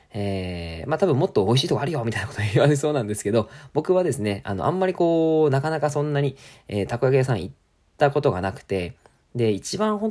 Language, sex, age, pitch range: Japanese, male, 20-39, 100-140 Hz